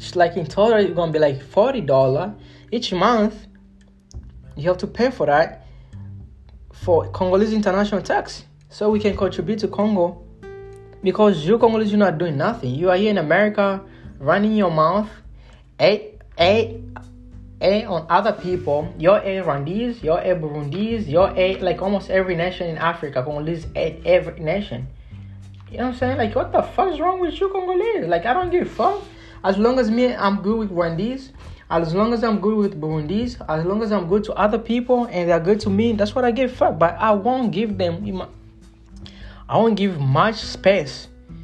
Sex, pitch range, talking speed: male, 145-210 Hz, 180 wpm